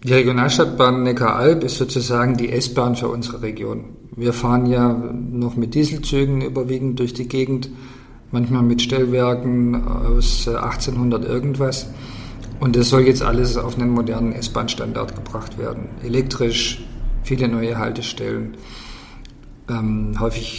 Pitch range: 120-135 Hz